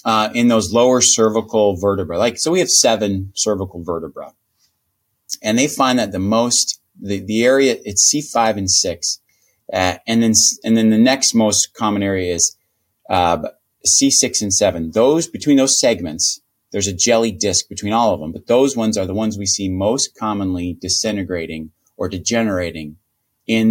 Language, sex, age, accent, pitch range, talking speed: English, male, 30-49, American, 100-130 Hz, 175 wpm